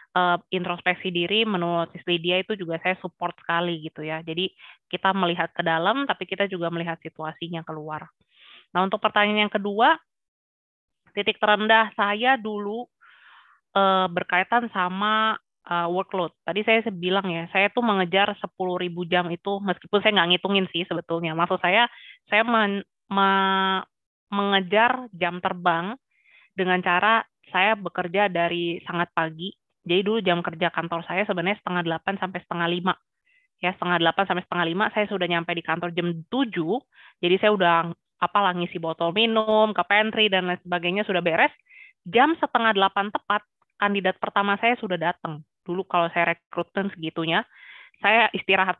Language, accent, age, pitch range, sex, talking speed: Indonesian, native, 20-39, 170-205 Hz, female, 145 wpm